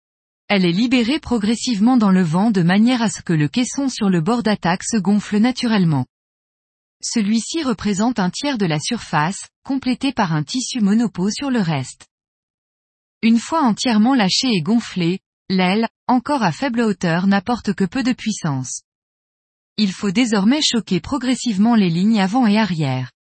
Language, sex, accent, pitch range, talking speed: French, female, French, 185-245 Hz, 160 wpm